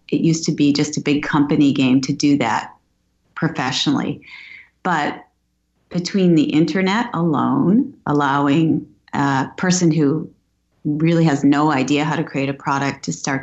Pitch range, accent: 145-165 Hz, American